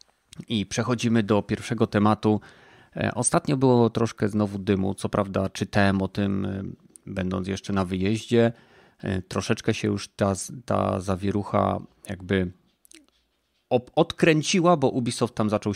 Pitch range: 105-125 Hz